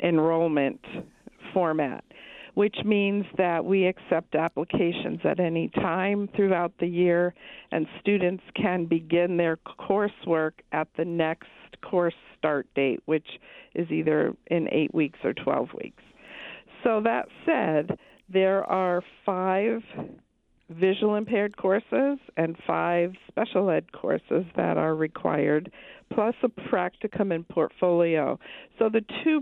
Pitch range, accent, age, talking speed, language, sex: 160-200 Hz, American, 50-69, 120 wpm, English, female